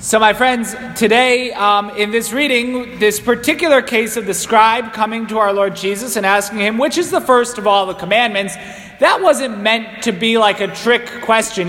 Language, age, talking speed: English, 30-49, 200 wpm